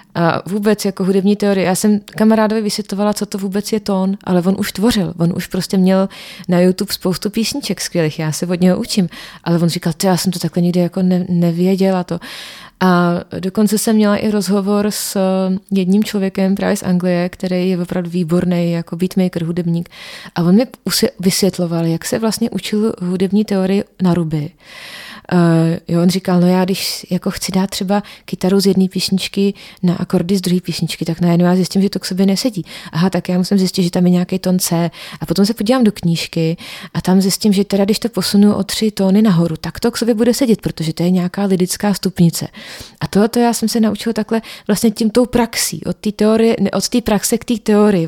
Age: 30-49